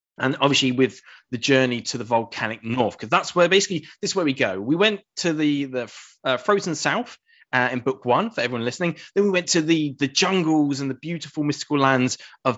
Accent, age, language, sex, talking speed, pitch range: British, 20-39, English, male, 220 wpm, 125-175 Hz